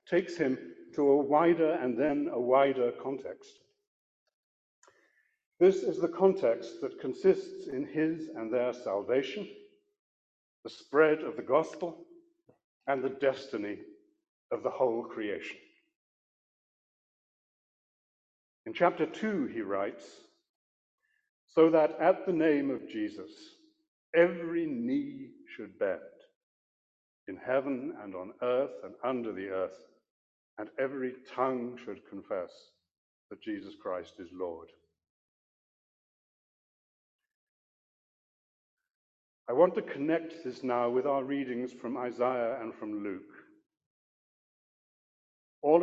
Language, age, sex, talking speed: English, 60-79, male, 110 wpm